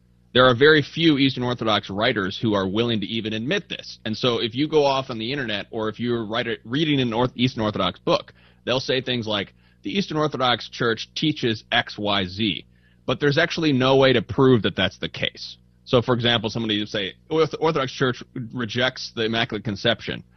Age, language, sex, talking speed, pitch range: 30-49, English, male, 205 wpm, 105-135 Hz